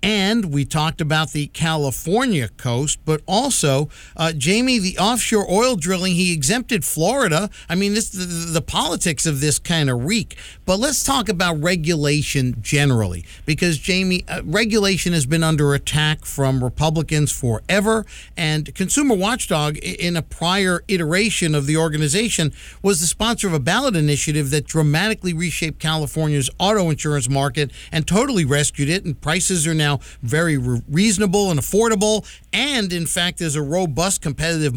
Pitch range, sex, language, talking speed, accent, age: 150-200 Hz, male, English, 155 wpm, American, 50-69